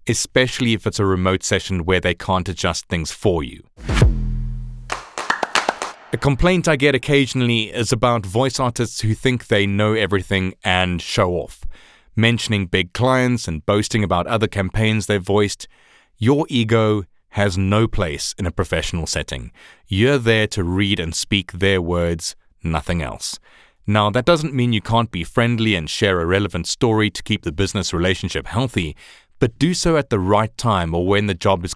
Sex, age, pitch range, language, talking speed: male, 30-49, 90-115 Hz, English, 170 wpm